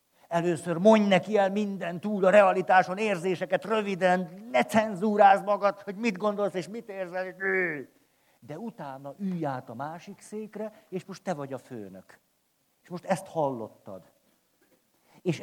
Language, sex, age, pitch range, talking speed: Hungarian, male, 50-69, 130-200 Hz, 150 wpm